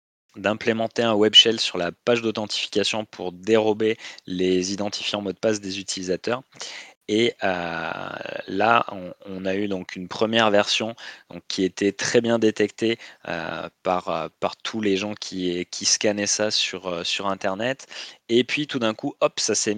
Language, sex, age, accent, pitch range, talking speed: French, male, 20-39, French, 95-115 Hz, 175 wpm